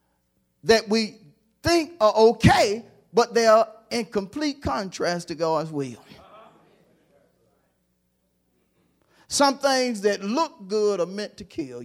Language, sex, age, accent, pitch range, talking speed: English, male, 40-59, American, 140-230 Hz, 115 wpm